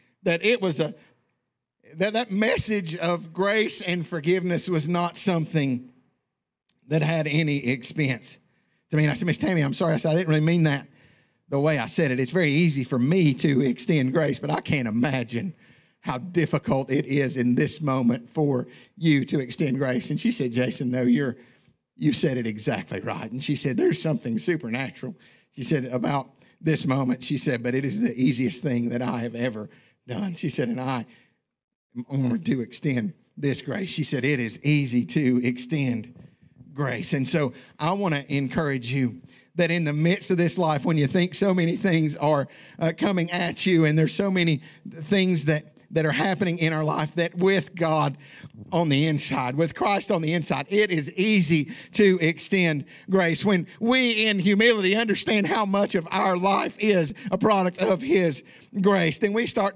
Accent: American